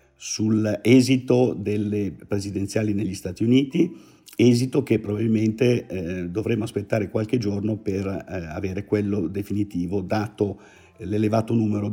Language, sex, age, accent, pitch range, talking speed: Italian, male, 50-69, native, 100-115 Hz, 110 wpm